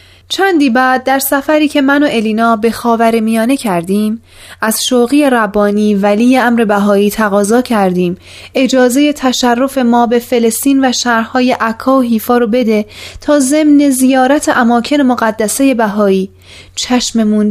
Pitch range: 195-255 Hz